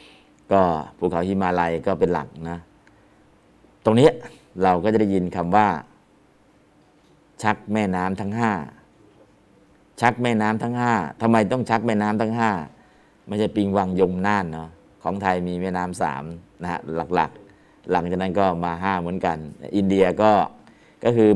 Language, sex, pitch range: Thai, male, 85-105 Hz